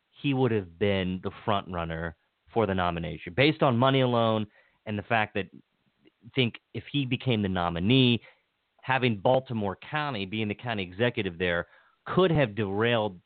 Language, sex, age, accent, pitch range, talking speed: English, male, 30-49, American, 105-135 Hz, 165 wpm